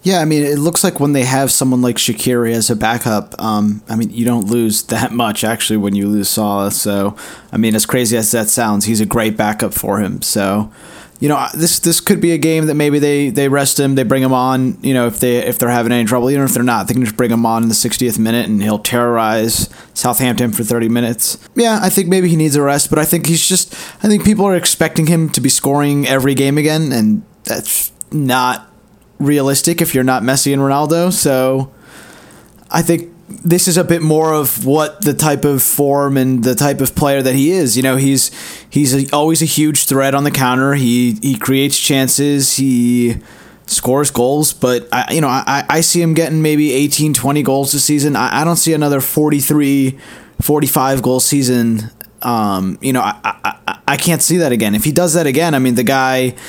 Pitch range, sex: 120-150 Hz, male